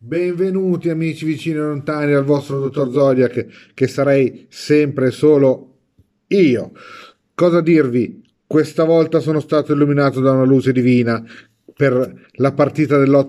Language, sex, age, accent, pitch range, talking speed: Italian, male, 40-59, native, 125-145 Hz, 135 wpm